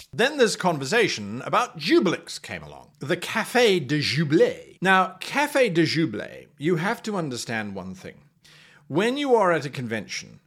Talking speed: 155 wpm